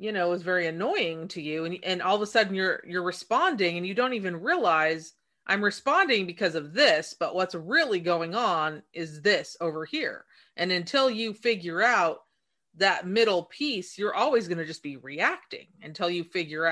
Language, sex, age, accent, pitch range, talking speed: English, female, 30-49, American, 160-225 Hz, 190 wpm